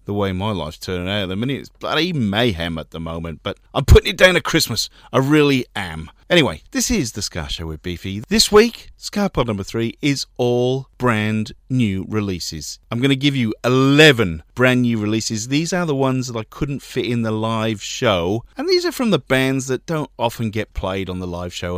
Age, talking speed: 40-59, 220 wpm